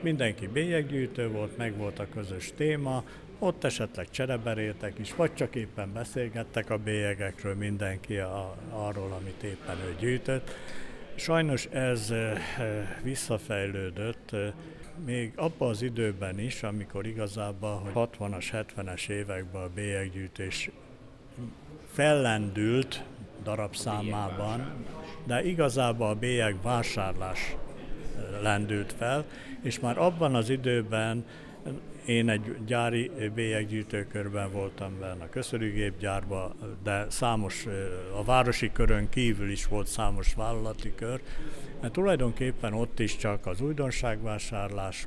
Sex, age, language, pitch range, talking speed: male, 60-79, Hungarian, 100-125 Hz, 110 wpm